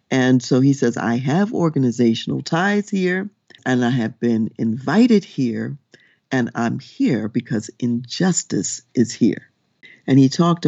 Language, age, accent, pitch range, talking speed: English, 50-69, American, 120-150 Hz, 140 wpm